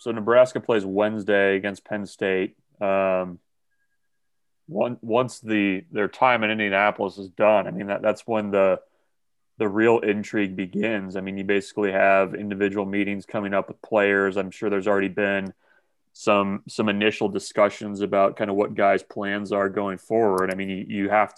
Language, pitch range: English, 100-110 Hz